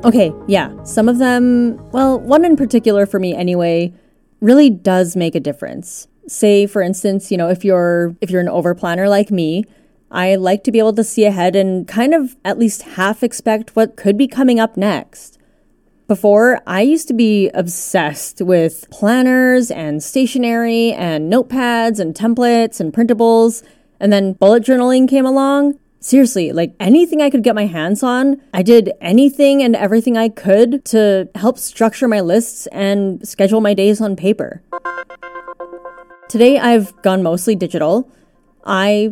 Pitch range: 180-235 Hz